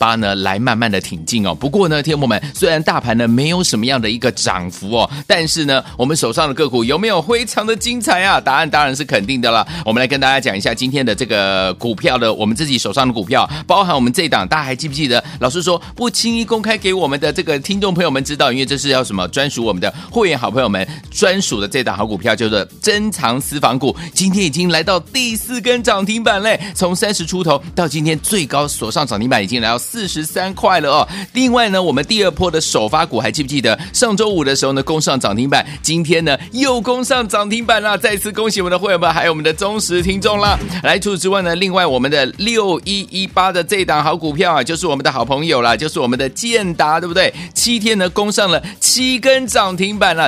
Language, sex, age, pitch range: Chinese, male, 30-49, 135-205 Hz